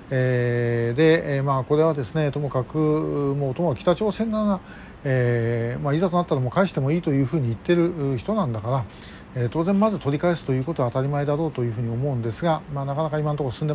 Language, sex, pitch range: Japanese, male, 130-170 Hz